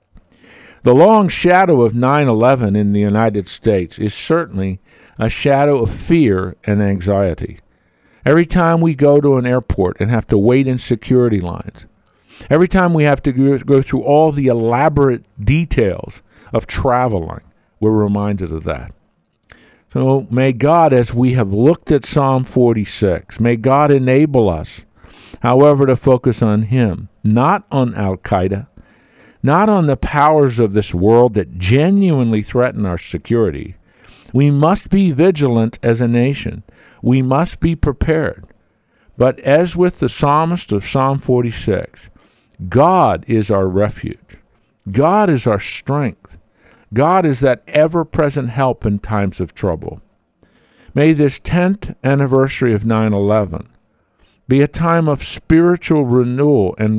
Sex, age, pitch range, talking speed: male, 50-69, 105-145 Hz, 140 wpm